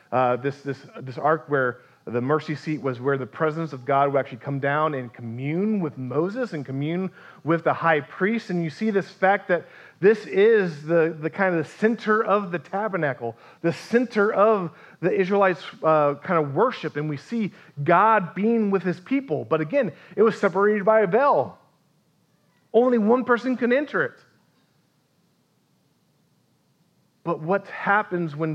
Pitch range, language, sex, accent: 140-180 Hz, English, male, American